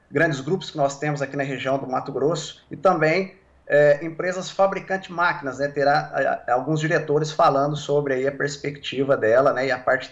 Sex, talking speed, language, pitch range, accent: male, 195 wpm, Portuguese, 140-170 Hz, Brazilian